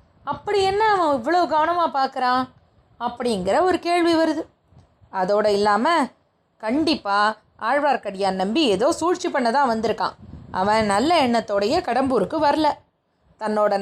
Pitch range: 200-280 Hz